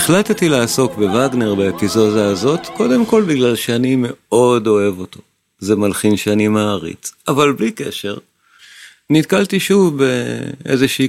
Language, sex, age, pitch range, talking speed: Hebrew, male, 40-59, 105-135 Hz, 120 wpm